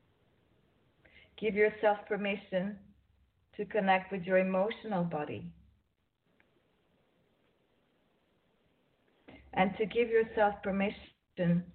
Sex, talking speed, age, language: female, 70 wpm, 40-59, English